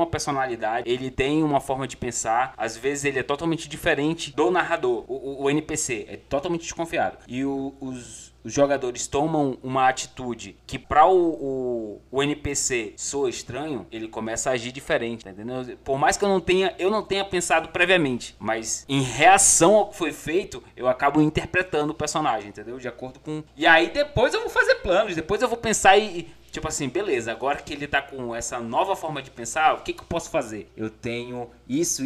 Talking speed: 200 wpm